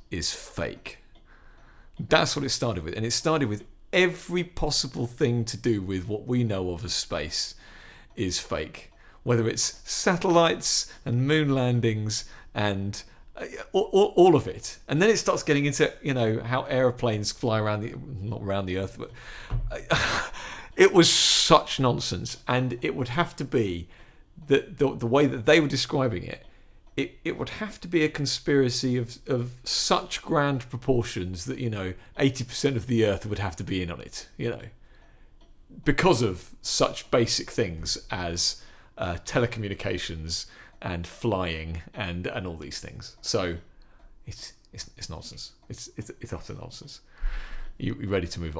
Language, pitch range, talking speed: English, 100-140 Hz, 165 wpm